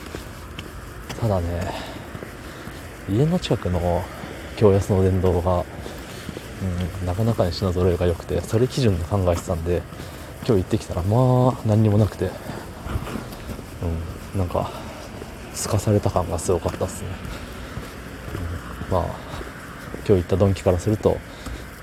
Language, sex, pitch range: Japanese, male, 85-105 Hz